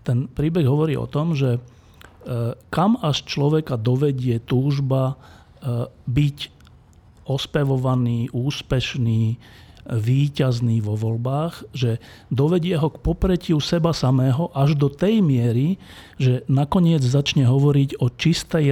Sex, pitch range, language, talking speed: male, 120-150 Hz, Slovak, 110 wpm